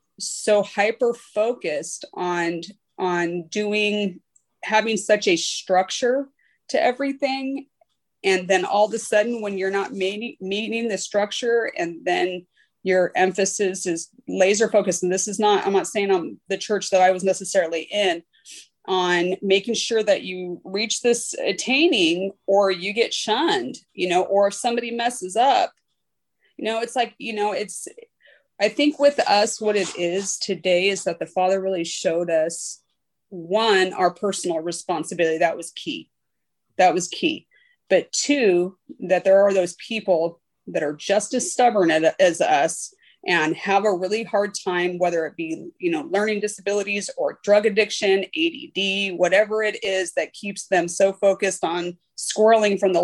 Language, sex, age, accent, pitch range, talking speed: English, female, 30-49, American, 185-225 Hz, 155 wpm